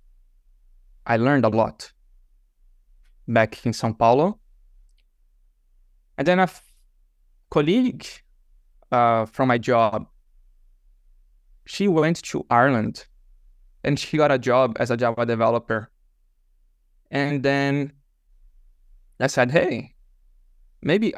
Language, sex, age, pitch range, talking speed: English, male, 20-39, 95-140 Hz, 100 wpm